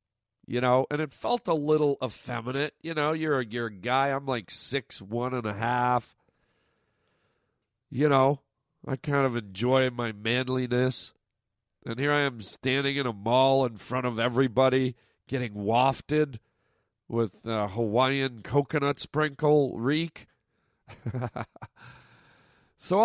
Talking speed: 130 wpm